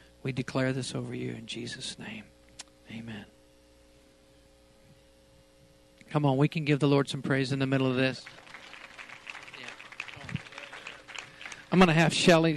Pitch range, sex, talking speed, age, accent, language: 120-145 Hz, male, 135 wpm, 50-69, American, English